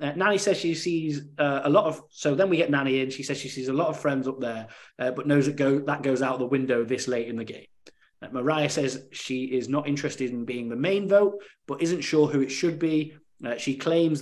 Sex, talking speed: male, 260 wpm